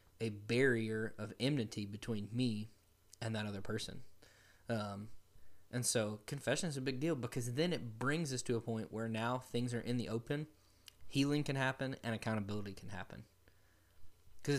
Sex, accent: male, American